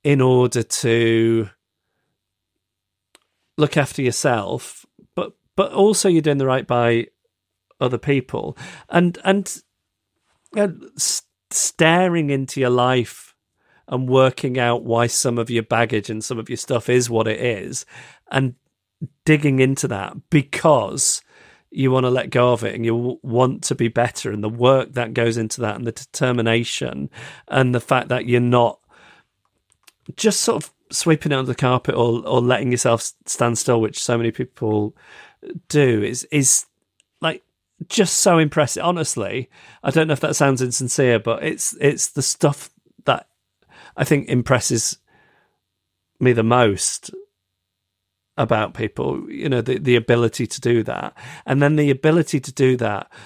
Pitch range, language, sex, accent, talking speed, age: 115-145 Hz, English, male, British, 155 wpm, 40-59